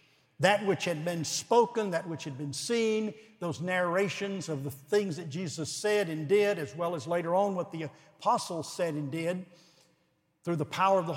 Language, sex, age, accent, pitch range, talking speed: English, male, 60-79, American, 150-180 Hz, 195 wpm